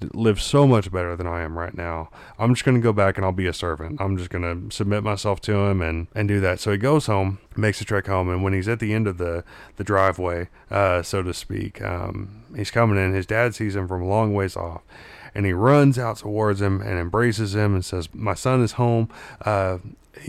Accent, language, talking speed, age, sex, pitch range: American, English, 240 wpm, 30-49, male, 95-110 Hz